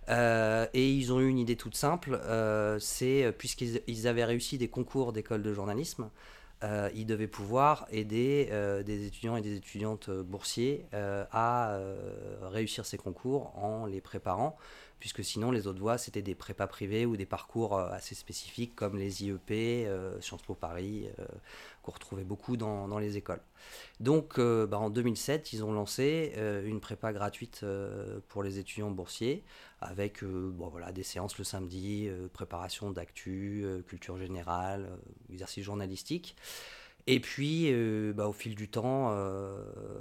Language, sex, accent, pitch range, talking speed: French, male, French, 100-115 Hz, 170 wpm